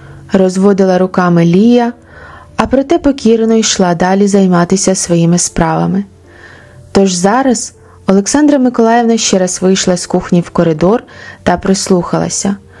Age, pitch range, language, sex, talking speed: 20-39, 180-230 Hz, Ukrainian, female, 110 wpm